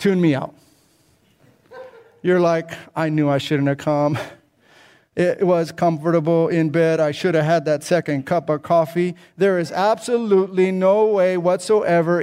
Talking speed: 150 wpm